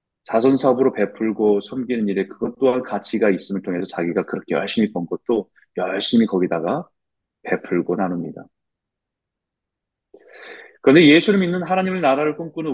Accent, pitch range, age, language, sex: native, 100-155 Hz, 30-49, Korean, male